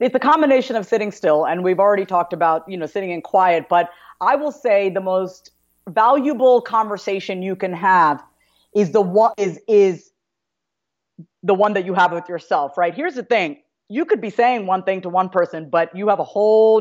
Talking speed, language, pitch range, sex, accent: 205 wpm, English, 180-230 Hz, female, American